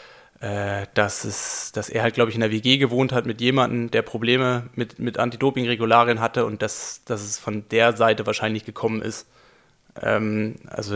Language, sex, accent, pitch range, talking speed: German, male, German, 110-120 Hz, 175 wpm